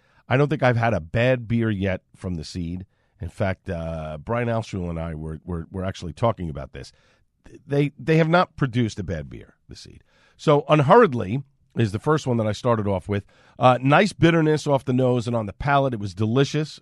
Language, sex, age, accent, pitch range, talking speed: English, male, 50-69, American, 105-145 Hz, 215 wpm